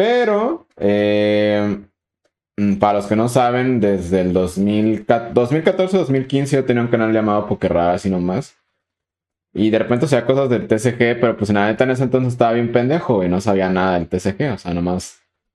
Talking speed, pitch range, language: 180 wpm, 95-125 Hz, Spanish